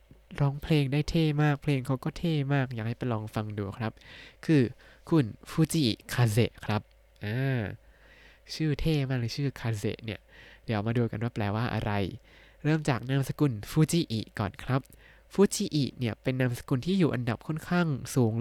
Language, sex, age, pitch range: Thai, male, 20-39, 115-150 Hz